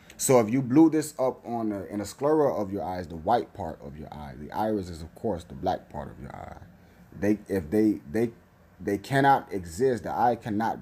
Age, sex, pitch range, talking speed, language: 30-49, male, 85-110 Hz, 225 wpm, English